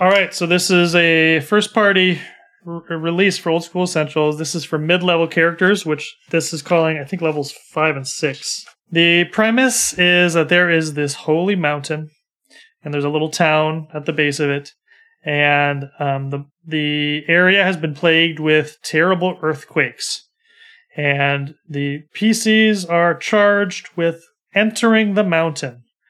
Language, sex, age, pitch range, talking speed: English, male, 30-49, 150-185 Hz, 150 wpm